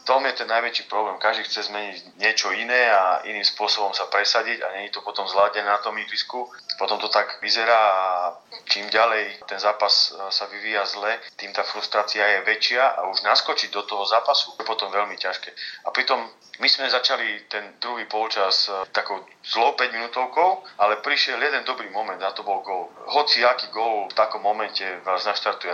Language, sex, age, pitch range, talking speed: Slovak, male, 30-49, 100-115 Hz, 185 wpm